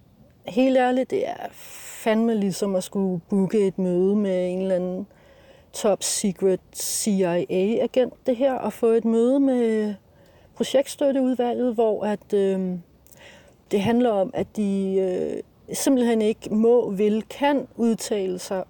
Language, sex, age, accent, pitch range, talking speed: Danish, female, 40-59, native, 190-260 Hz, 130 wpm